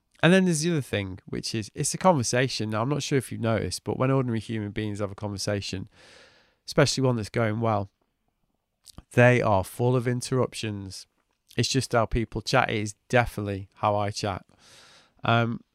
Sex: male